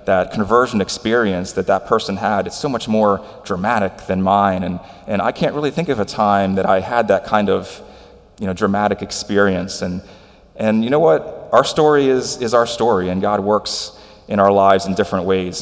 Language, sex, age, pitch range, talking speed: English, male, 30-49, 95-105 Hz, 205 wpm